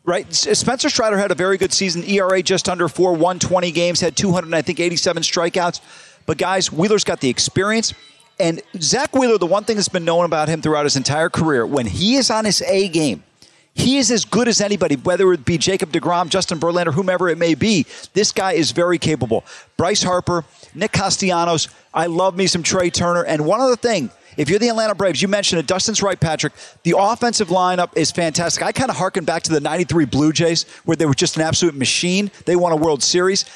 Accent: American